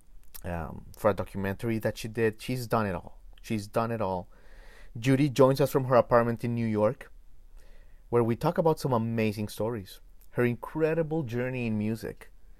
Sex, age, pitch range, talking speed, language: male, 30-49, 105-130 Hz, 170 wpm, English